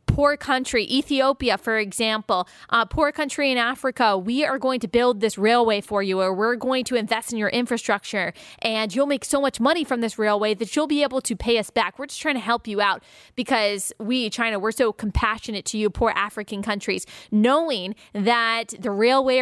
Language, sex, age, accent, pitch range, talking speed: English, female, 20-39, American, 215-260 Hz, 205 wpm